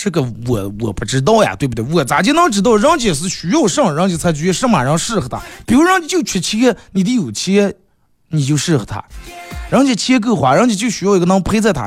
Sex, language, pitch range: male, Chinese, 125-205 Hz